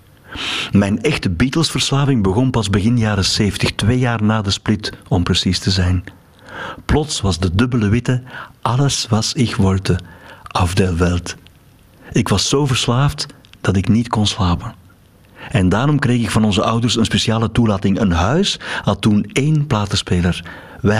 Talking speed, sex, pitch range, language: 150 wpm, male, 95-125 Hz, Dutch